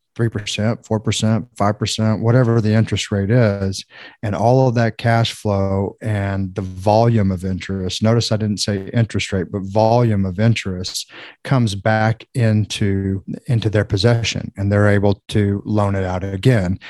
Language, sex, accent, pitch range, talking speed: English, male, American, 100-115 Hz, 140 wpm